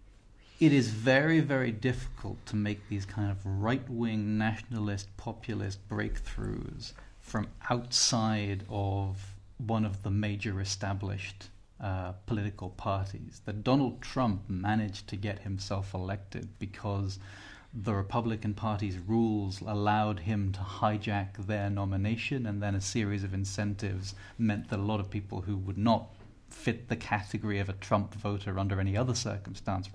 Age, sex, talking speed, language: 30-49, male, 140 wpm, English